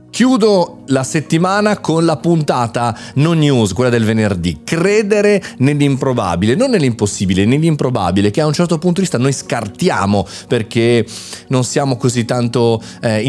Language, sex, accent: Italian, male, native